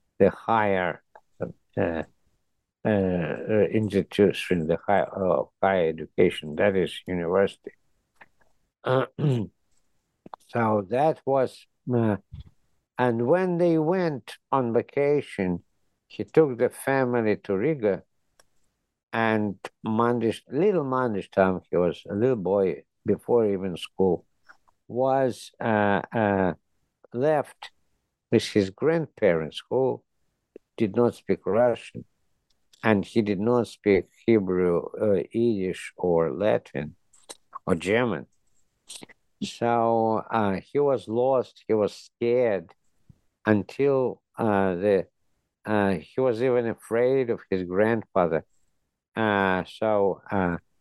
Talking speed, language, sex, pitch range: 100 wpm, English, male, 95-125 Hz